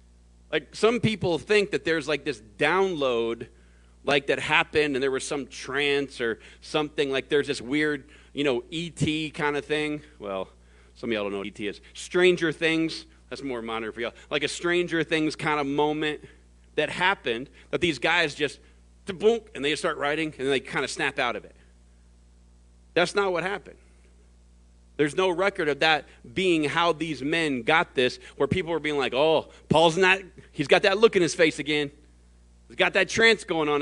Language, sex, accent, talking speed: English, male, American, 195 wpm